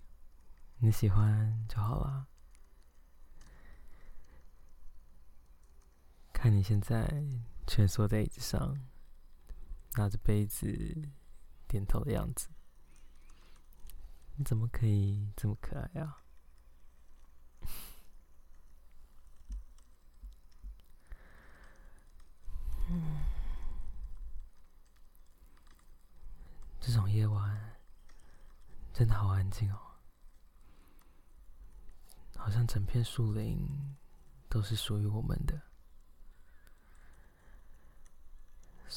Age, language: 20-39, Chinese